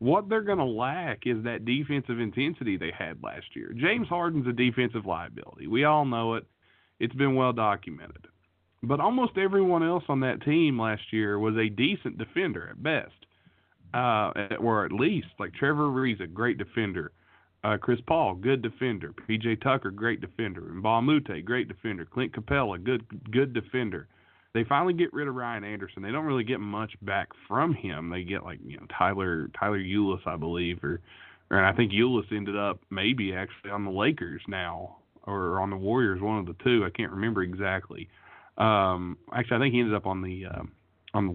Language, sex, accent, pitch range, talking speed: English, male, American, 100-130 Hz, 190 wpm